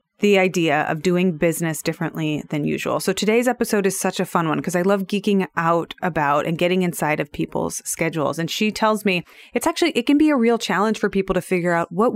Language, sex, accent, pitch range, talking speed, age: English, female, American, 165-220 Hz, 225 wpm, 30-49